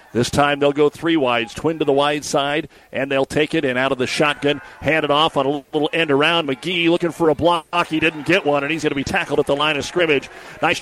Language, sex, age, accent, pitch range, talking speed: English, male, 50-69, American, 130-160 Hz, 265 wpm